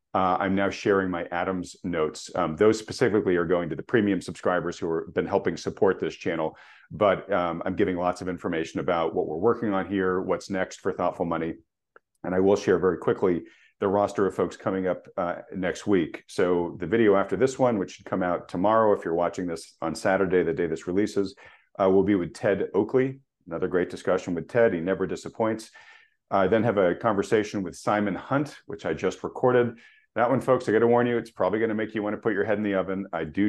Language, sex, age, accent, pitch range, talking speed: English, male, 40-59, American, 90-105 Hz, 230 wpm